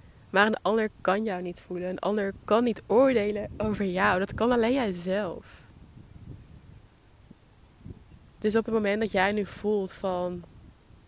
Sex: female